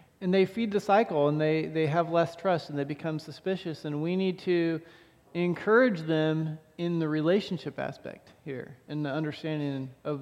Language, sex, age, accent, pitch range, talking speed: English, male, 40-59, American, 145-180 Hz, 175 wpm